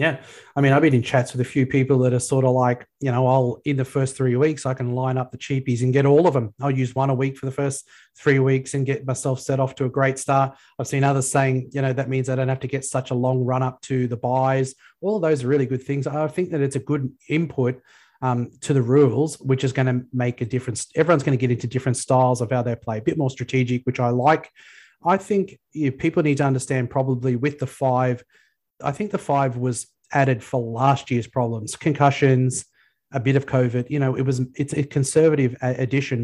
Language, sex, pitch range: English, male, 125-140 Hz